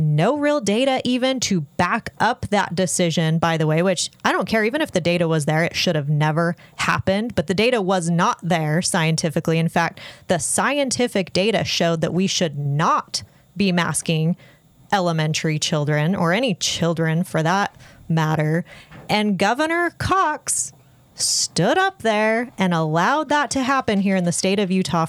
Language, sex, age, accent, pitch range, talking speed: English, female, 30-49, American, 160-215 Hz, 170 wpm